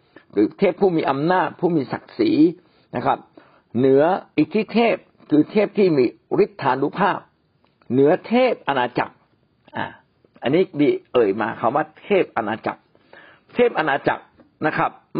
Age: 60-79